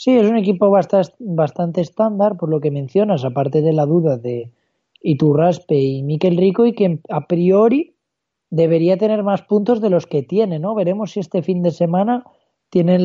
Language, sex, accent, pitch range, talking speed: Spanish, male, Spanish, 155-205 Hz, 180 wpm